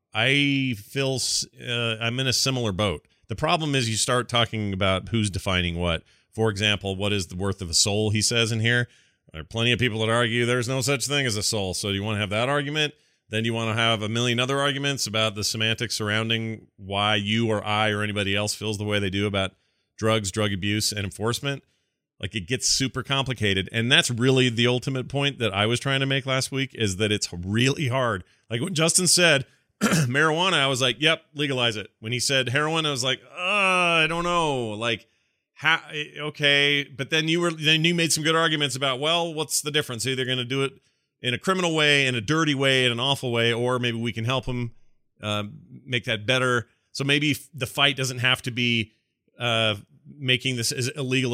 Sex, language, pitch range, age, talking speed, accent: male, English, 110-140 Hz, 30-49, 220 wpm, American